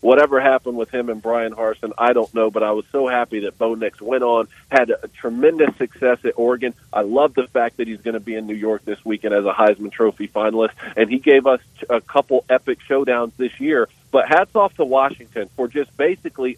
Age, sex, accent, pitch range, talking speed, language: 40-59, male, American, 115-185 Hz, 230 wpm, English